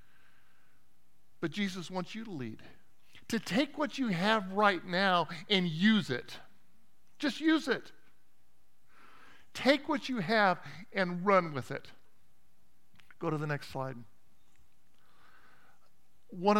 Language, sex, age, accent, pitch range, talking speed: English, male, 50-69, American, 115-190 Hz, 120 wpm